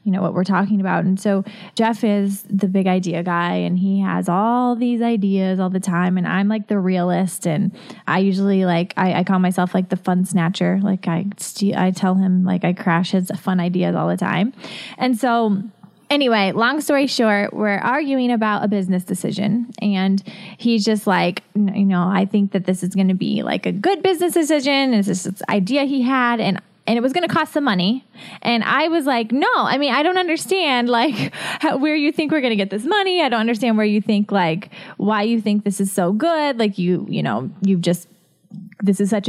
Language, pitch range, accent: English, 185-230 Hz, American